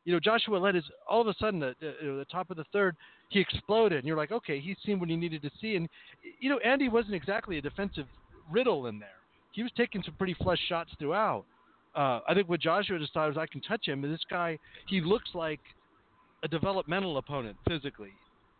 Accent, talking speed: American, 225 wpm